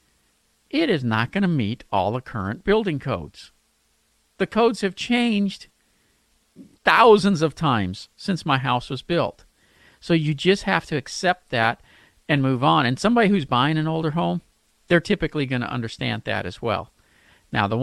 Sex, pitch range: male, 115-165 Hz